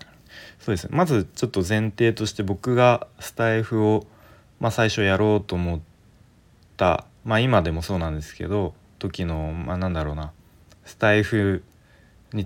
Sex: male